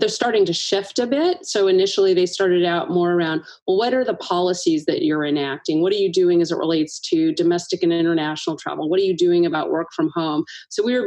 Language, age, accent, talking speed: English, 30-49, American, 240 wpm